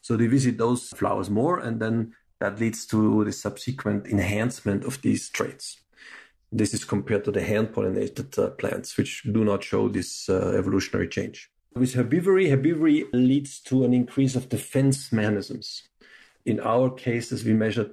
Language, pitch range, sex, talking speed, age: English, 105-130 Hz, male, 165 wpm, 40-59